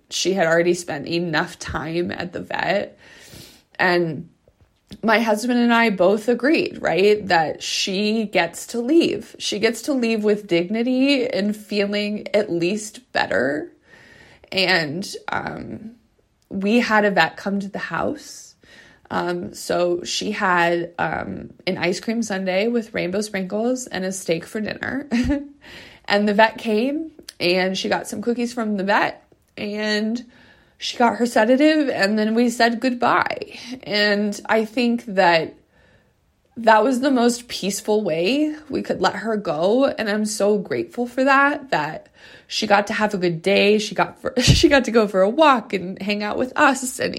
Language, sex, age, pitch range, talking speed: English, female, 20-39, 195-245 Hz, 160 wpm